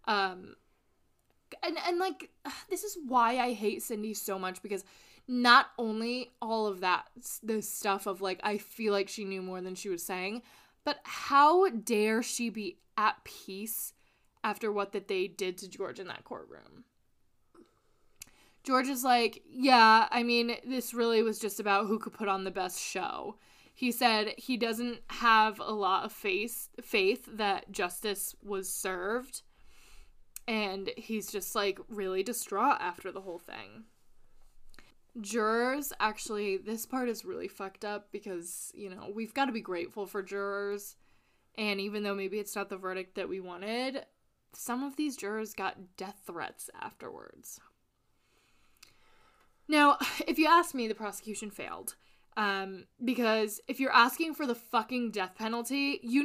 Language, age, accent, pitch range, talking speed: English, 20-39, American, 200-245 Hz, 155 wpm